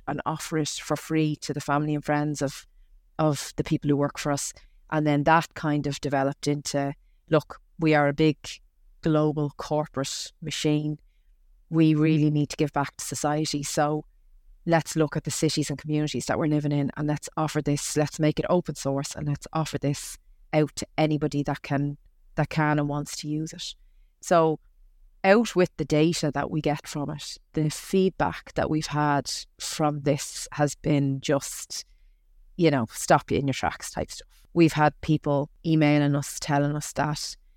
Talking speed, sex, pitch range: 185 wpm, female, 140-155 Hz